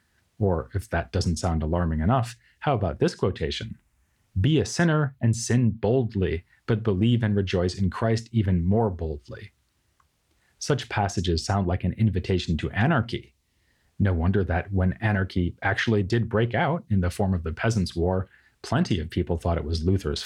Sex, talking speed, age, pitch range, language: male, 170 wpm, 30-49, 85-110 Hz, English